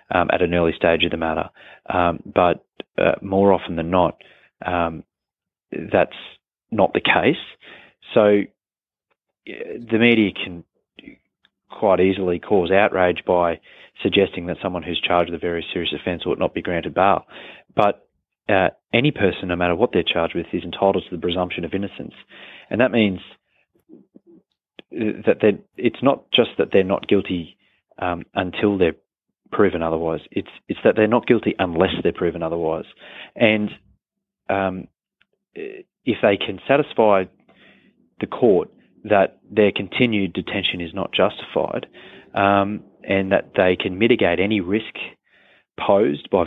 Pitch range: 90-105 Hz